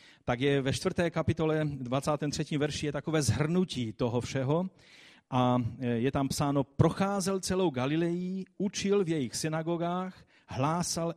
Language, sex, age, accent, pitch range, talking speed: Czech, male, 40-59, native, 135-165 Hz, 130 wpm